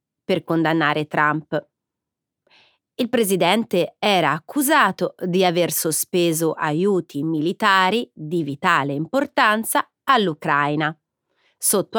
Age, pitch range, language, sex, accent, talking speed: 30-49, 160-230 Hz, Italian, female, native, 85 wpm